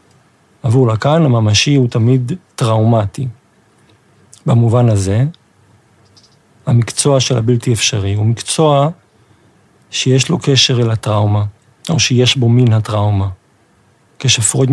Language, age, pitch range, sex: Hebrew, 50-69, 110-130 Hz, male